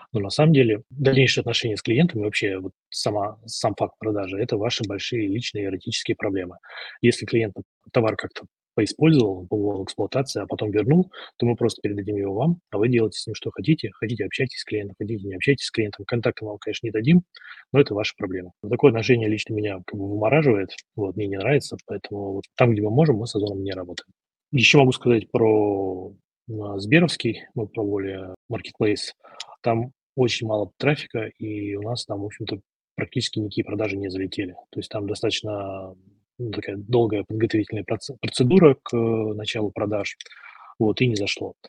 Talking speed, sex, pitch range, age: 180 wpm, male, 100-120 Hz, 20-39